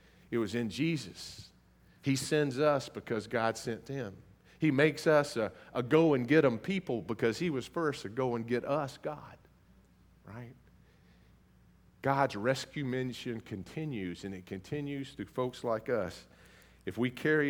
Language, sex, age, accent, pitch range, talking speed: English, male, 50-69, American, 100-135 Hz, 160 wpm